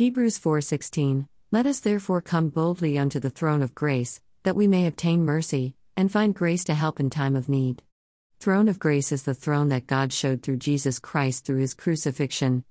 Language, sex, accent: English, female, American